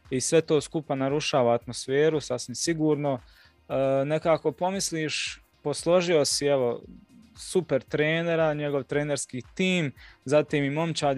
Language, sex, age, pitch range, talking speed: Croatian, male, 20-39, 125-150 Hz, 120 wpm